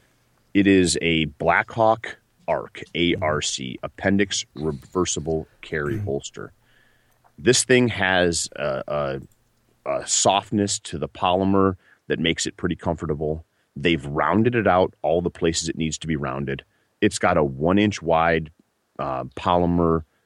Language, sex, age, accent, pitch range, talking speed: English, male, 30-49, American, 75-95 Hz, 135 wpm